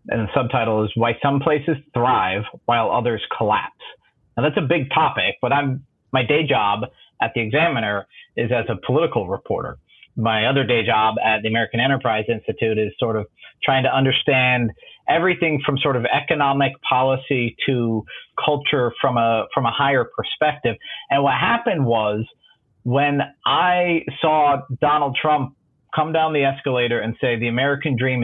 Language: English